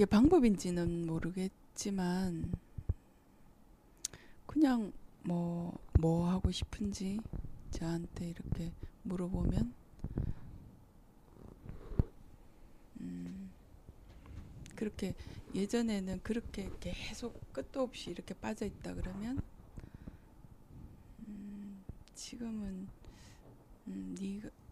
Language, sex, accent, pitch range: Korean, female, native, 160-210 Hz